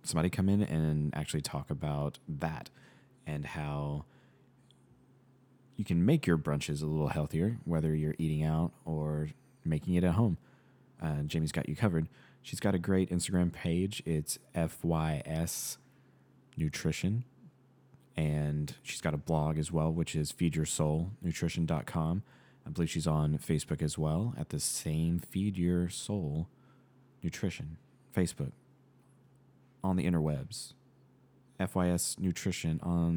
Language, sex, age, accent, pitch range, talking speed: English, male, 30-49, American, 80-125 Hz, 130 wpm